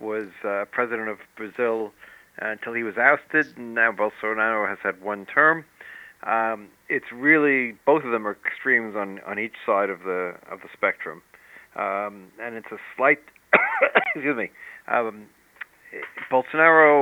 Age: 50-69